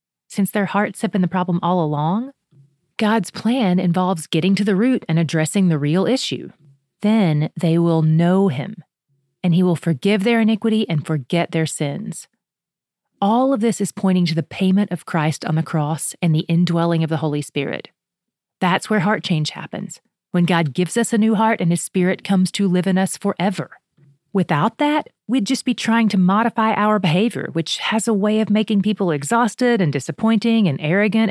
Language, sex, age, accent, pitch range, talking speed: English, female, 30-49, American, 165-215 Hz, 190 wpm